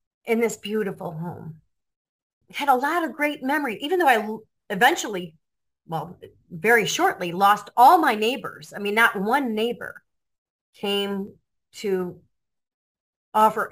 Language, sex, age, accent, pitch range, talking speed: English, female, 40-59, American, 195-275 Hz, 125 wpm